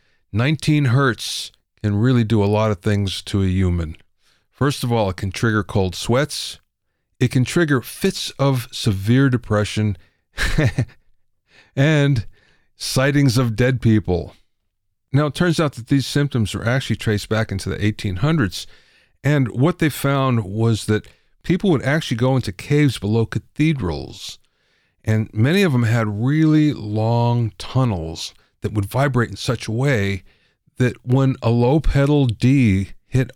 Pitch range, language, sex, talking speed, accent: 105-135 Hz, English, male, 150 wpm, American